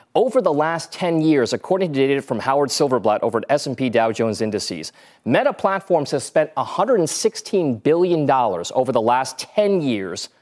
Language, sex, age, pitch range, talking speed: English, male, 30-49, 125-175 Hz, 160 wpm